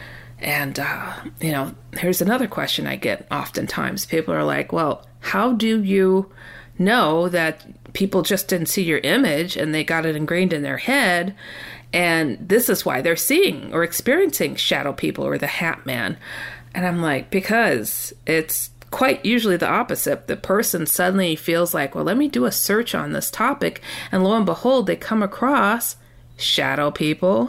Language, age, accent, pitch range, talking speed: English, 40-59, American, 160-215 Hz, 170 wpm